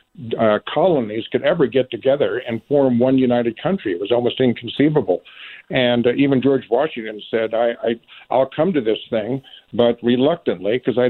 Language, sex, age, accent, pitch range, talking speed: English, male, 50-69, American, 125-140 Hz, 175 wpm